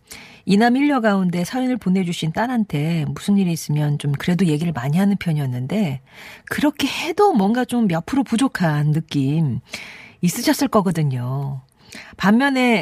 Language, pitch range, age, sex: Korean, 155-220 Hz, 40-59, female